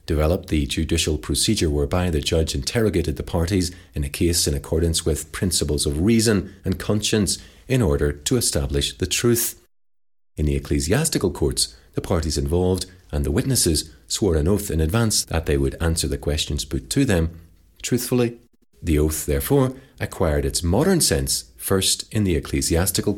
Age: 40-59